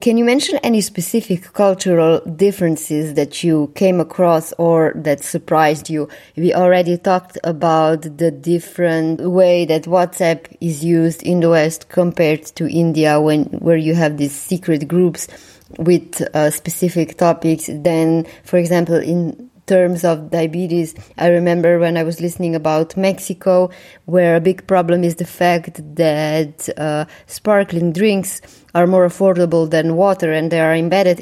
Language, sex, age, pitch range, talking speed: English, female, 20-39, 160-180 Hz, 150 wpm